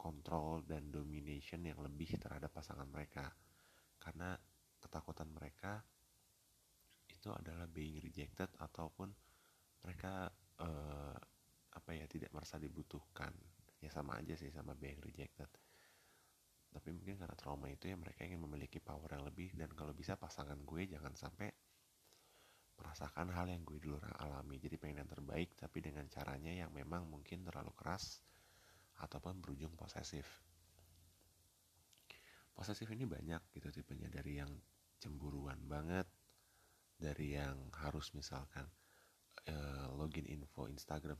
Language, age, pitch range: Indonesian, 30-49, 75-85 Hz